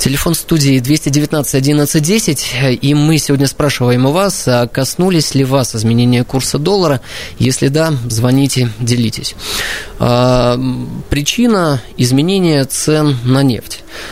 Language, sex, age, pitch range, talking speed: Russian, male, 20-39, 120-145 Hz, 110 wpm